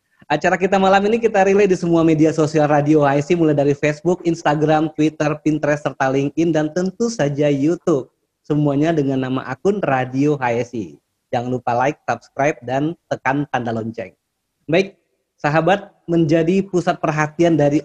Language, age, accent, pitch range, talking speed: Indonesian, 20-39, native, 135-165 Hz, 150 wpm